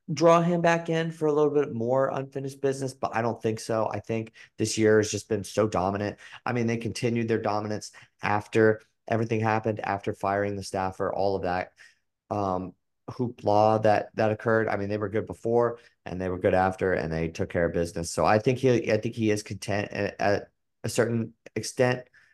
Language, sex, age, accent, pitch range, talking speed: English, male, 30-49, American, 95-115 Hz, 200 wpm